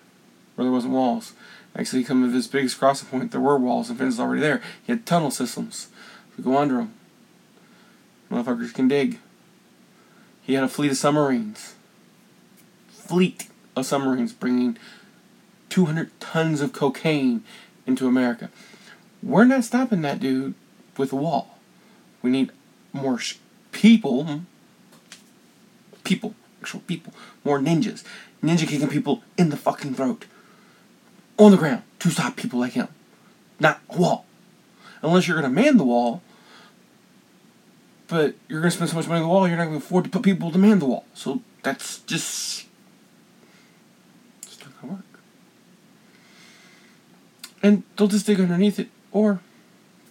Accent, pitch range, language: American, 145-220 Hz, English